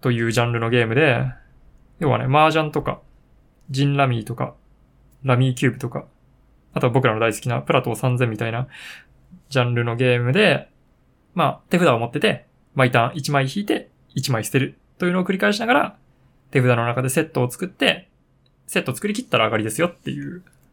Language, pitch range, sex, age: Japanese, 125-170 Hz, male, 20-39